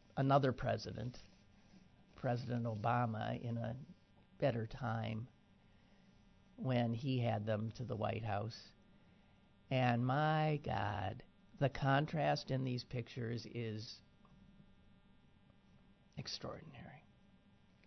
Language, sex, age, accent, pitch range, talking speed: English, male, 50-69, American, 105-135 Hz, 85 wpm